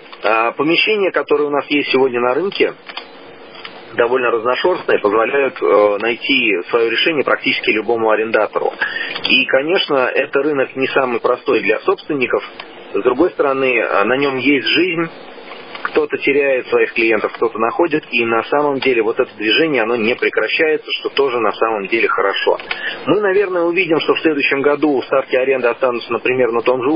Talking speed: 155 wpm